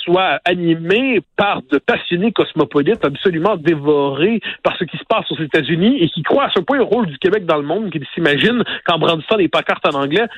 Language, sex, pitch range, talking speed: French, male, 160-230 Hz, 210 wpm